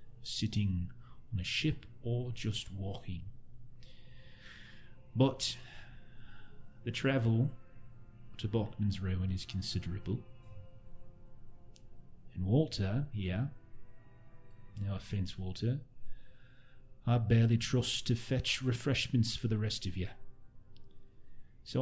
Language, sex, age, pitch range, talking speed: English, male, 30-49, 105-125 Hz, 90 wpm